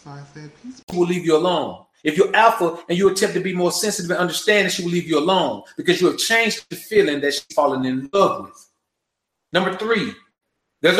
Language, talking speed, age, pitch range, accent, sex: English, 200 wpm, 30-49, 175-220 Hz, American, male